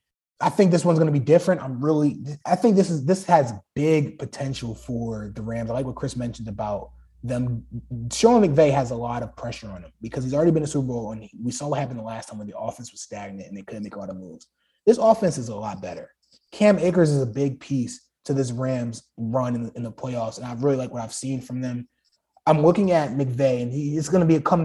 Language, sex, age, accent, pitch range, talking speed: English, male, 20-39, American, 120-160 Hz, 270 wpm